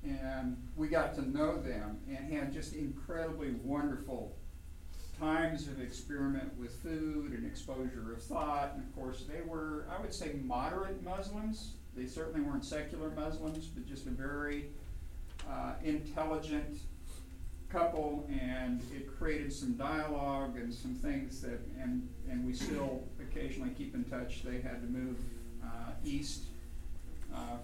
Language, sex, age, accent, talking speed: English, male, 50-69, American, 145 wpm